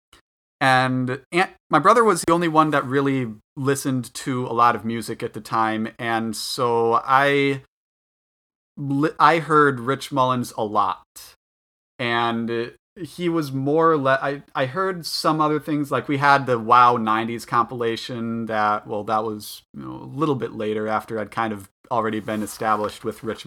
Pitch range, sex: 110-140 Hz, male